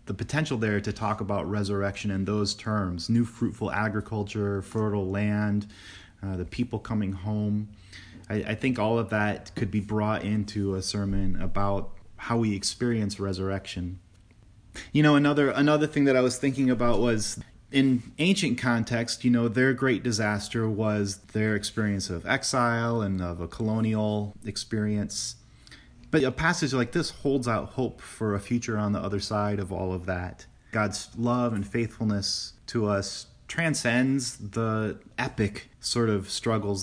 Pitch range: 100-120 Hz